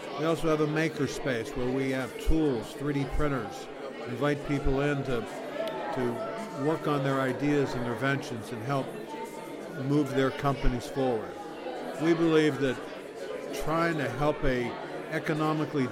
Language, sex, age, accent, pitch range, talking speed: English, male, 50-69, American, 130-145 Hz, 145 wpm